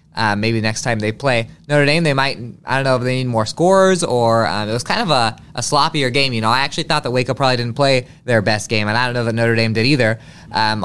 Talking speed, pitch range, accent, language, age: 280 wpm, 110-135 Hz, American, English, 20-39